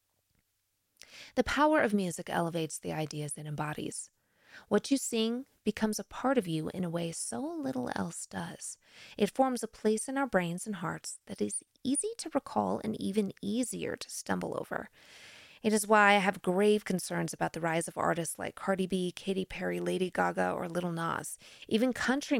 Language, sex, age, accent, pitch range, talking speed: English, female, 30-49, American, 160-225 Hz, 180 wpm